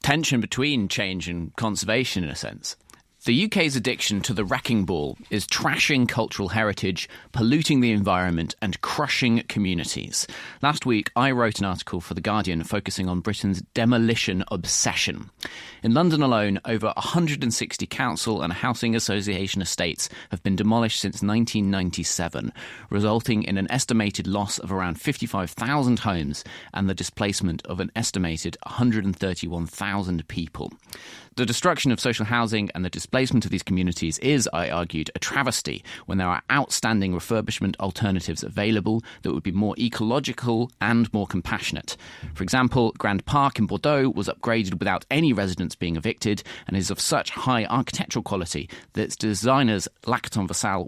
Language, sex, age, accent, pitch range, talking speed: English, male, 30-49, British, 95-115 Hz, 150 wpm